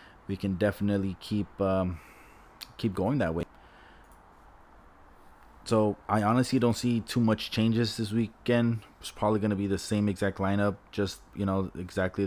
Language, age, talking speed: English, 20-39, 155 wpm